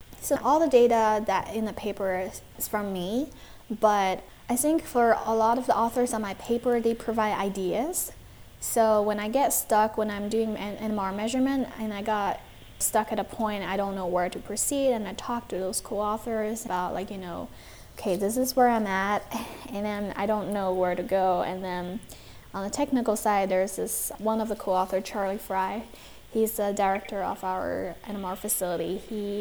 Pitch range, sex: 190-225 Hz, female